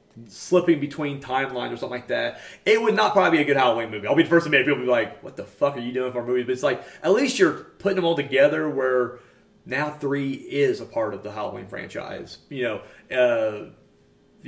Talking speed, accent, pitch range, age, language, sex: 235 wpm, American, 125-155 Hz, 30-49, English, male